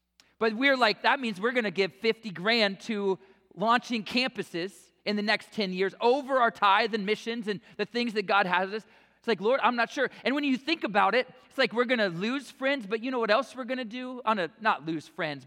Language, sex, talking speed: English, male, 250 wpm